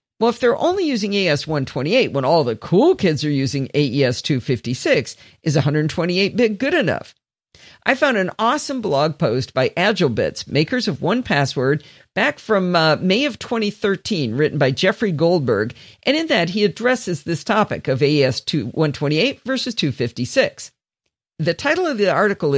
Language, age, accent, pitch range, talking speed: English, 50-69, American, 145-220 Hz, 145 wpm